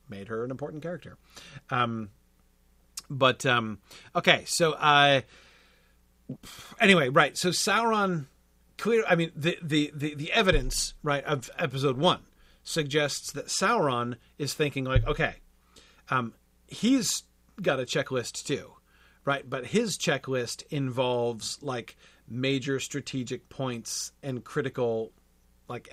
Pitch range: 115-150 Hz